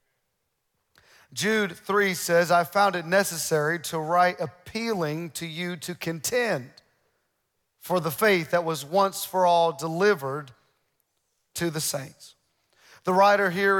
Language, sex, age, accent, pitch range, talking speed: English, male, 40-59, American, 175-215 Hz, 125 wpm